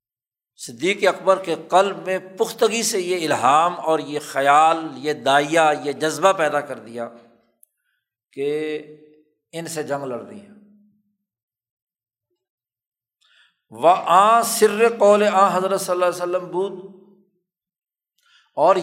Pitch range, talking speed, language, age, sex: 140-195 Hz, 120 wpm, Urdu, 60-79, male